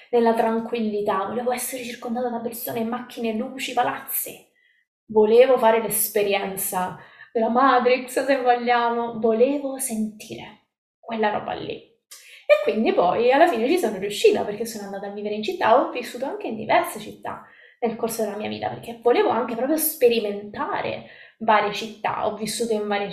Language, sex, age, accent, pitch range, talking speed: Italian, female, 20-39, native, 210-250 Hz, 155 wpm